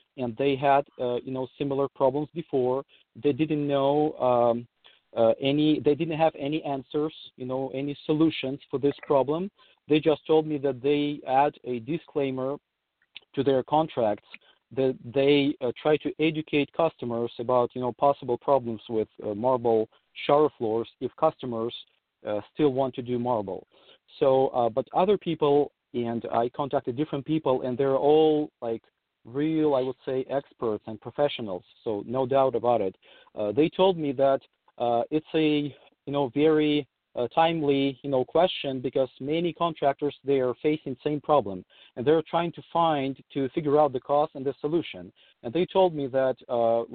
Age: 40-59